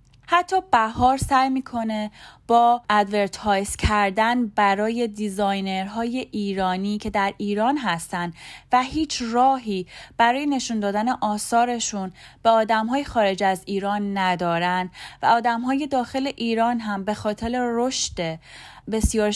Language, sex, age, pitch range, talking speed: Persian, female, 30-49, 195-235 Hz, 110 wpm